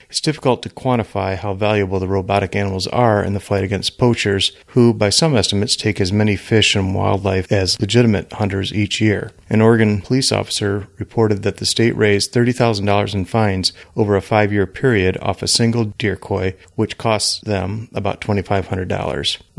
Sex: male